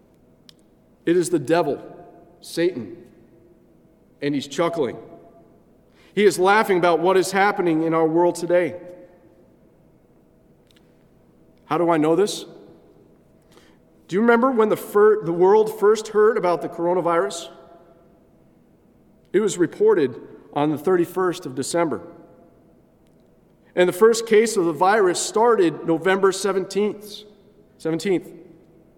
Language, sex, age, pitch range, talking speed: English, male, 40-59, 170-225 Hz, 115 wpm